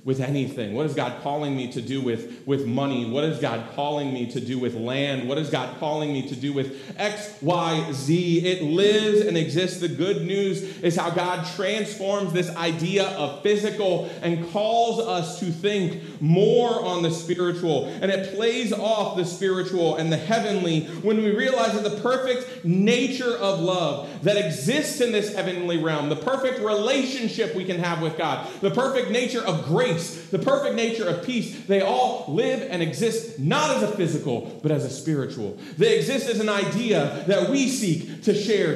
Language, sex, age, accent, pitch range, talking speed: English, male, 30-49, American, 155-210 Hz, 185 wpm